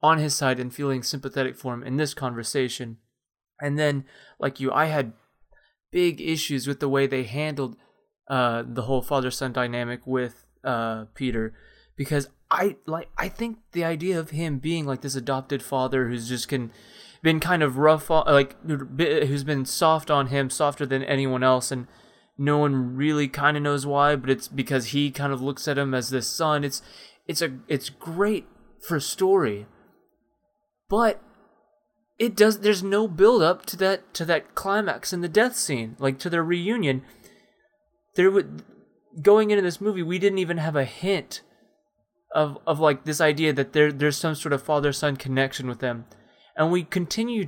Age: 20-39